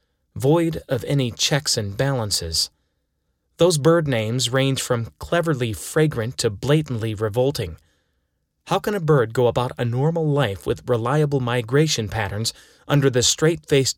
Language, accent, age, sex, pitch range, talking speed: English, American, 30-49, male, 110-150 Hz, 135 wpm